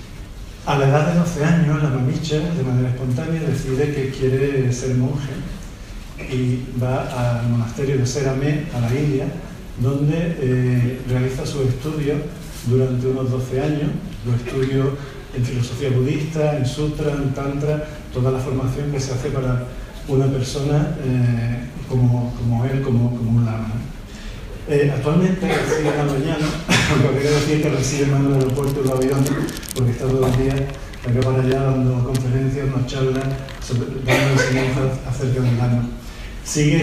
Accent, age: Argentinian, 40-59